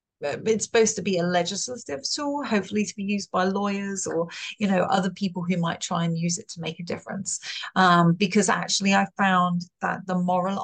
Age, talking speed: 30-49, 205 wpm